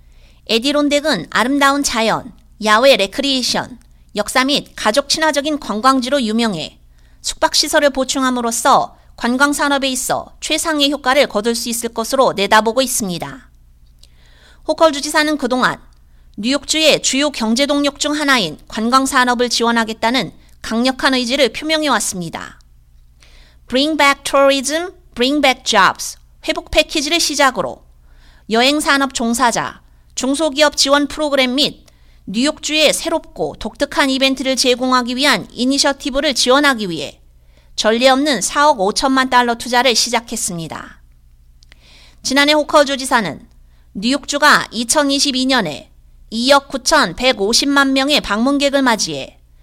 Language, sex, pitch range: Korean, female, 215-285 Hz